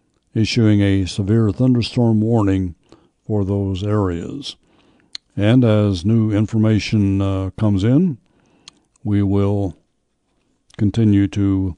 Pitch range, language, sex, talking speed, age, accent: 95-115 Hz, English, male, 95 wpm, 60-79, American